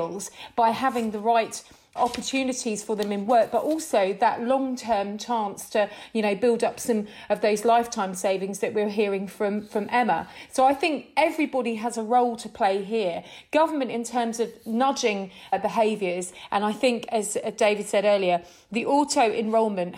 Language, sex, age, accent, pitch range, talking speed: English, female, 40-59, British, 210-245 Hz, 170 wpm